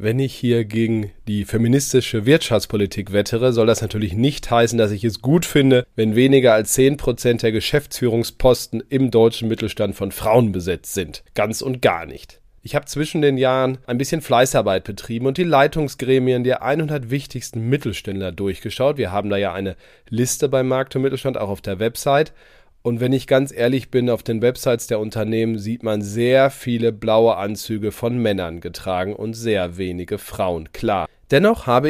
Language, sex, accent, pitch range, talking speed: German, male, German, 110-135 Hz, 175 wpm